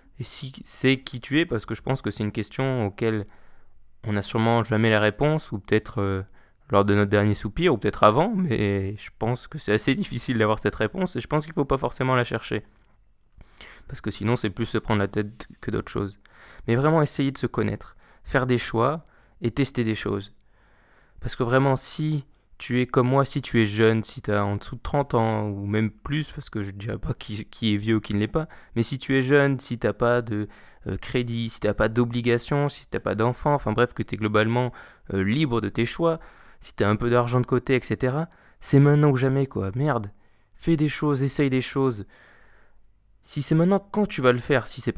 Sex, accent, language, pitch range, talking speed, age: male, French, French, 105-135 Hz, 240 wpm, 20-39